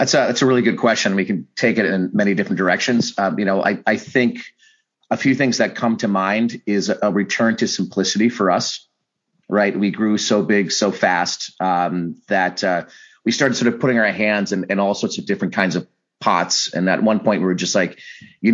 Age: 30-49